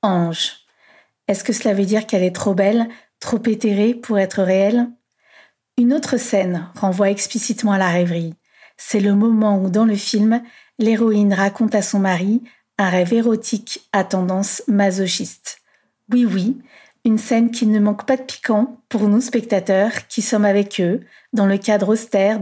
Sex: female